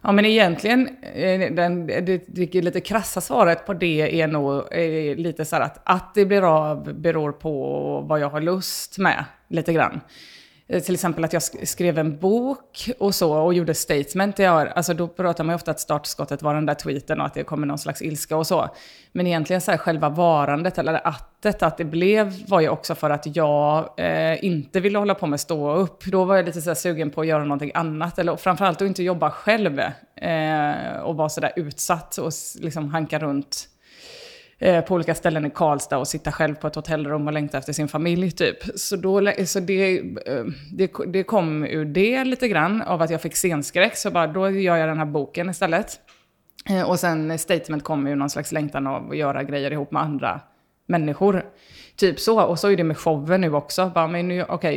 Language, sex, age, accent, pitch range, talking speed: English, female, 30-49, Swedish, 155-185 Hz, 205 wpm